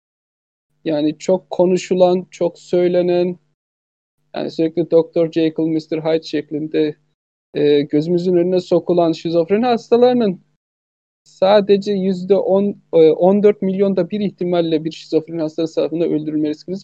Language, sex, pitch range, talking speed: Turkish, male, 155-195 Hz, 105 wpm